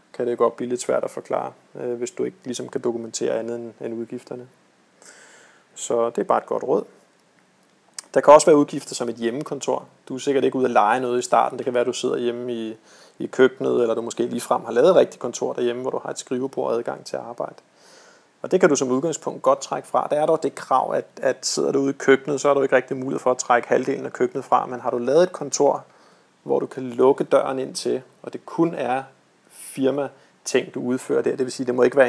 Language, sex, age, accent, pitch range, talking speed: Danish, male, 30-49, native, 120-135 Hz, 245 wpm